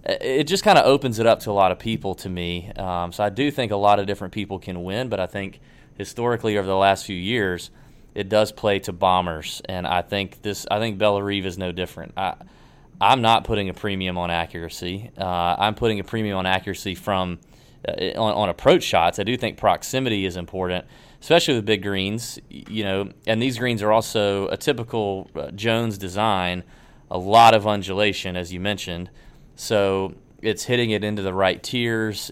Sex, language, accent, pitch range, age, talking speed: male, English, American, 95-110 Hz, 30-49, 195 wpm